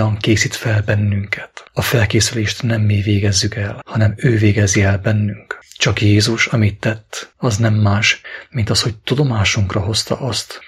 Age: 30-49